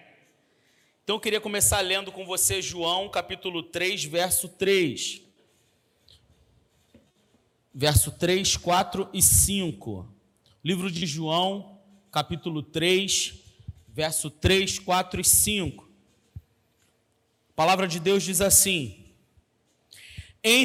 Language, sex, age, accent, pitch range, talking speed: Portuguese, male, 40-59, Brazilian, 175-225 Hz, 100 wpm